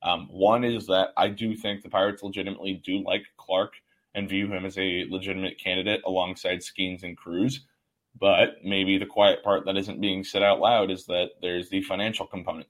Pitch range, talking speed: 95-110 Hz, 195 wpm